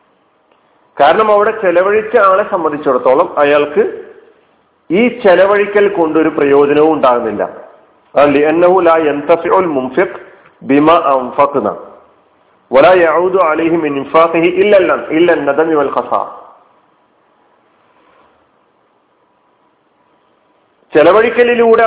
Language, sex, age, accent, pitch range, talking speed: Malayalam, male, 40-59, native, 150-235 Hz, 35 wpm